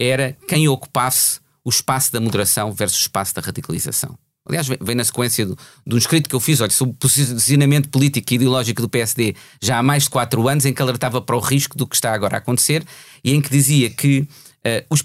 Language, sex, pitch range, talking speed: Portuguese, male, 125-150 Hz, 215 wpm